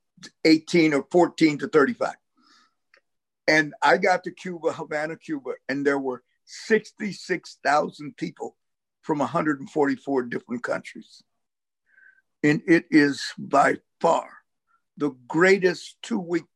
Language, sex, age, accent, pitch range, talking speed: English, male, 50-69, American, 135-175 Hz, 105 wpm